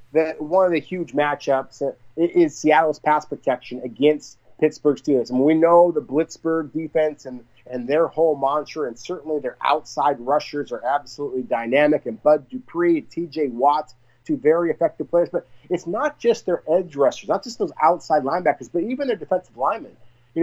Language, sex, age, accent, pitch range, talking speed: English, male, 30-49, American, 135-180 Hz, 180 wpm